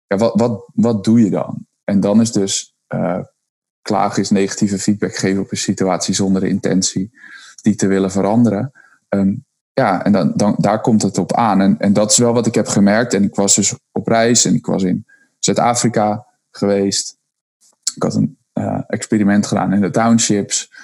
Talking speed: 195 wpm